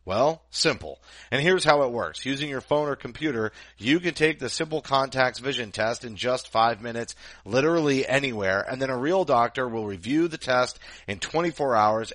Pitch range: 110-135 Hz